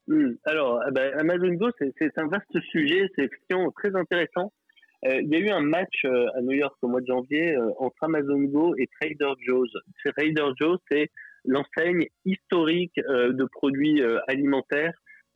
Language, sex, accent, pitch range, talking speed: French, male, French, 130-165 Hz, 145 wpm